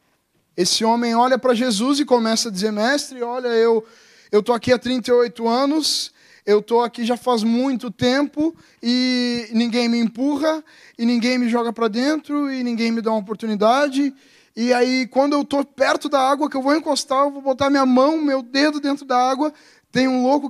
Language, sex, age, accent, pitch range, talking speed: Portuguese, male, 20-39, Brazilian, 205-260 Hz, 195 wpm